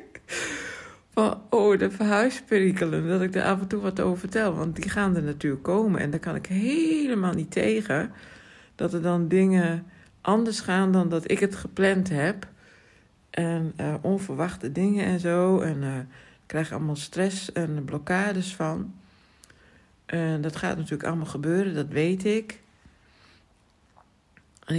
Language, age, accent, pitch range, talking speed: Dutch, 60-79, Dutch, 155-190 Hz, 155 wpm